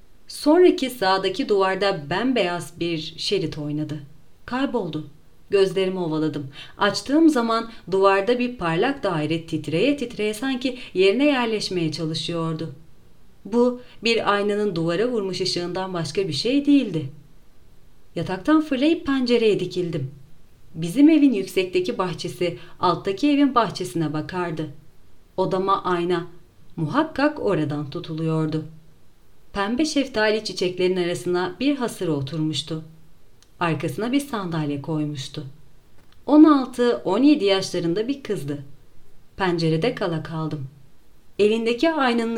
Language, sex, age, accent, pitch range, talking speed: Turkish, female, 40-59, native, 155-230 Hz, 100 wpm